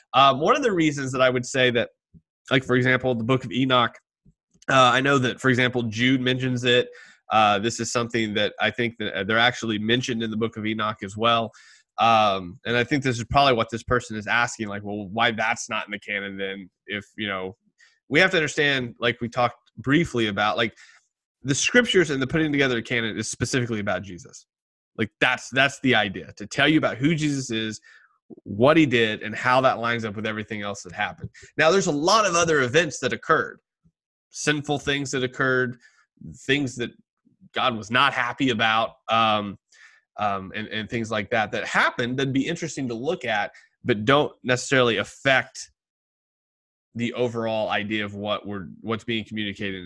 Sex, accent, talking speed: male, American, 195 wpm